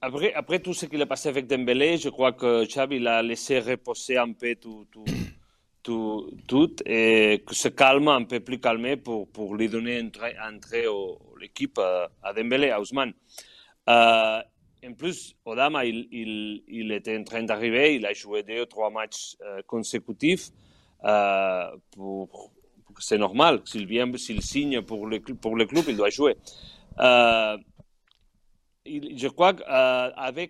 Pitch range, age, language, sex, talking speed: 110-135 Hz, 40-59, French, male, 160 wpm